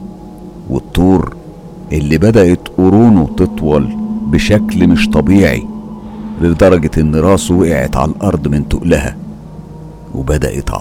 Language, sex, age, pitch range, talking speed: Arabic, male, 50-69, 70-100 Hz, 95 wpm